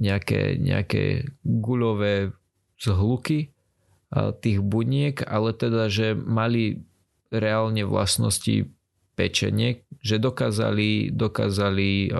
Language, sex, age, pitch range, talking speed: Slovak, male, 20-39, 95-115 Hz, 80 wpm